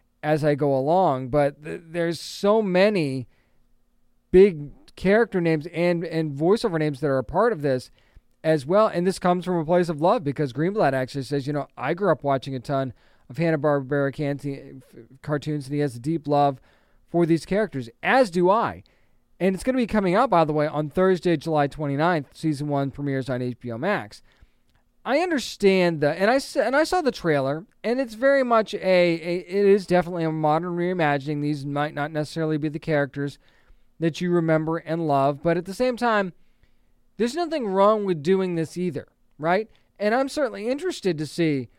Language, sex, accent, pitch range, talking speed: English, male, American, 145-190 Hz, 190 wpm